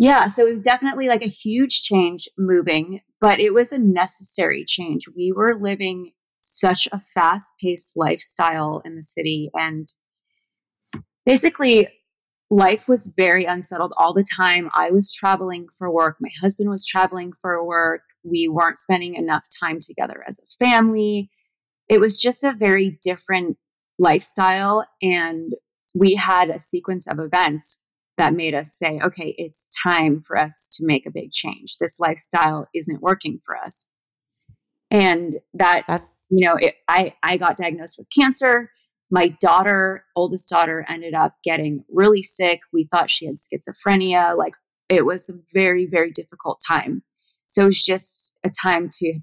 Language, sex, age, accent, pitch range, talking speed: English, female, 30-49, American, 165-195 Hz, 160 wpm